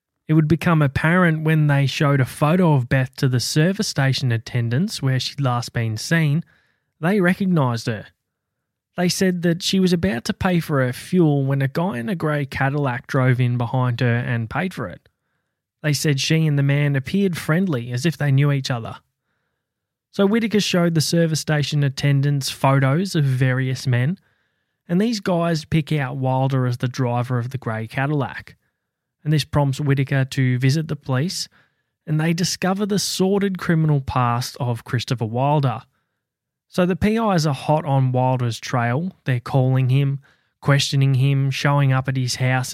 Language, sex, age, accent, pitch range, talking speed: English, male, 20-39, Australian, 130-160 Hz, 175 wpm